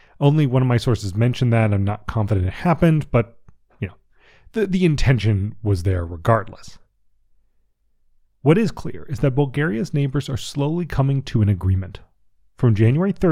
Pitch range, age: 105-155 Hz, 30-49